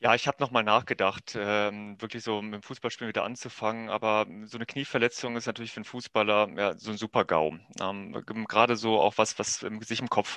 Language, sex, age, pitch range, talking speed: German, male, 30-49, 105-115 Hz, 205 wpm